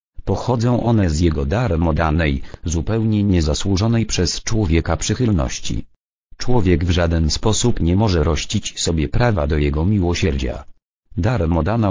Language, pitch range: Polish, 80-105 Hz